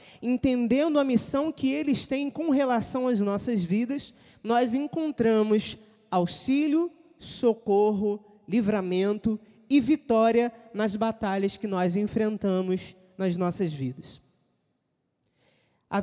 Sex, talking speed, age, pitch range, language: male, 100 wpm, 20-39, 210-275 Hz, Portuguese